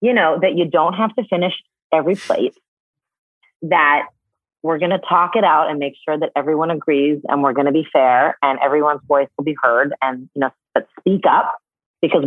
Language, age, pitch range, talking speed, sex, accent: English, 30-49, 140-195 Hz, 195 wpm, female, American